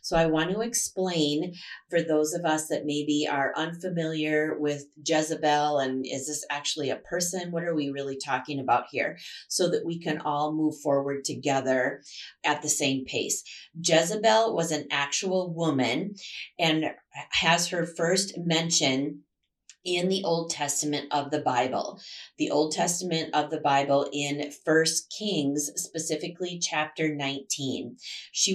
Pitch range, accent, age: 145-175 Hz, American, 30-49